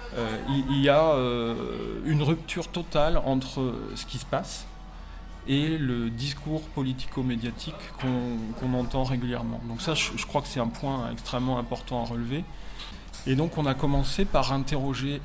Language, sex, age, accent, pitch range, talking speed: French, male, 20-39, French, 120-140 Hz, 155 wpm